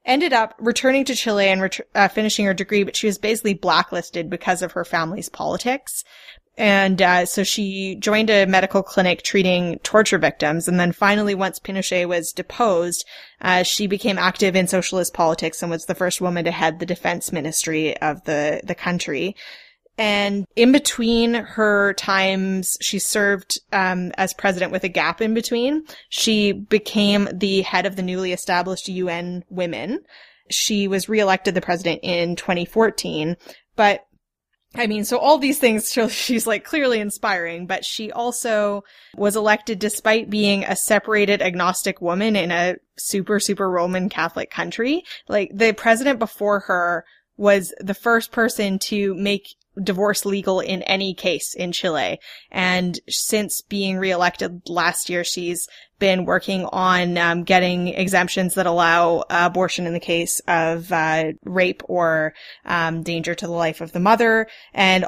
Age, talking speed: 20-39, 160 wpm